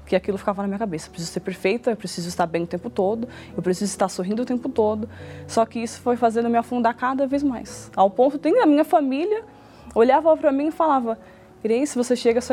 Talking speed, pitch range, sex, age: 240 wpm, 185-250 Hz, female, 20-39